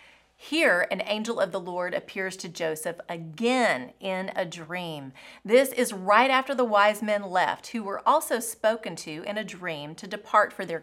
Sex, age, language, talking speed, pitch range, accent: female, 30-49, English, 185 wpm, 175-230 Hz, American